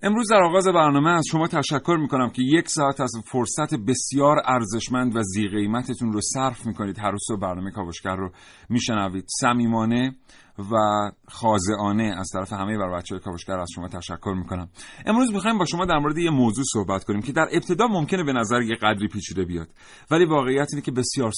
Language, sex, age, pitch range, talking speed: Persian, male, 40-59, 105-145 Hz, 185 wpm